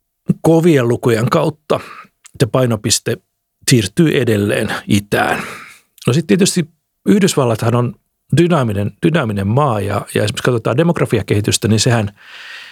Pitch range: 105-135 Hz